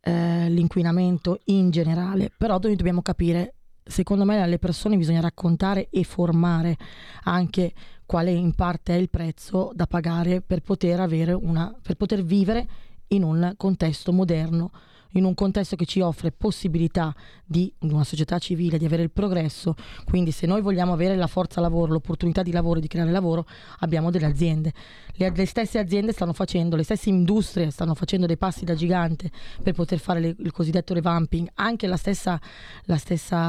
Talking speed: 165 wpm